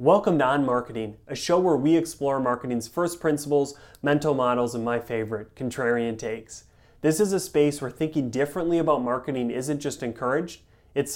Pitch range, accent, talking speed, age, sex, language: 120-150 Hz, American, 170 wpm, 30-49, male, English